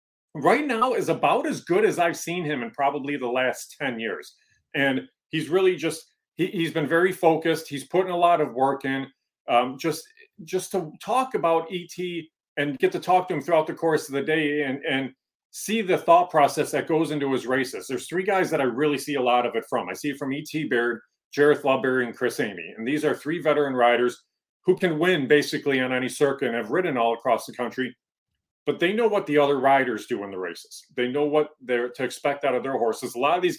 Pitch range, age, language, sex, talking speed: 130-165 Hz, 40-59, English, male, 230 wpm